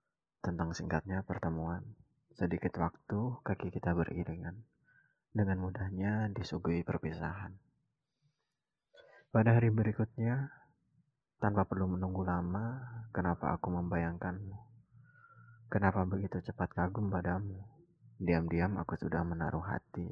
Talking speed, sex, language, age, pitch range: 95 wpm, male, Indonesian, 20-39, 85-115 Hz